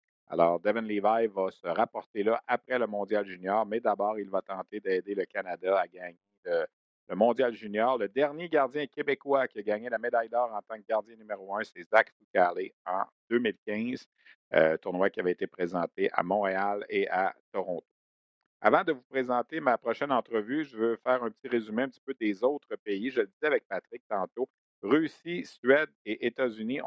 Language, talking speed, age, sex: French, 190 wpm, 50-69, male